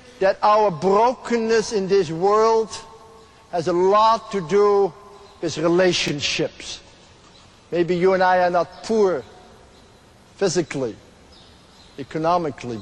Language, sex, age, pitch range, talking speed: English, male, 60-79, 175-215 Hz, 105 wpm